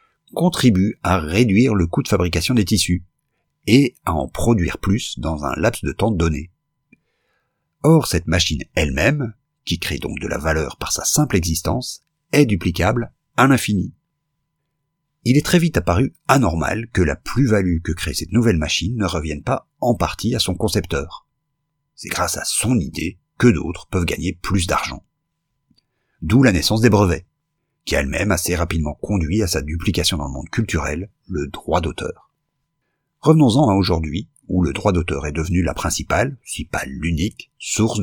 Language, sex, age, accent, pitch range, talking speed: French, male, 50-69, French, 85-125 Hz, 170 wpm